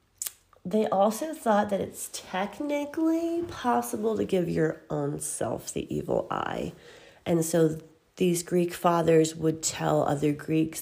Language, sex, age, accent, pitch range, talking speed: English, female, 40-59, American, 160-225 Hz, 135 wpm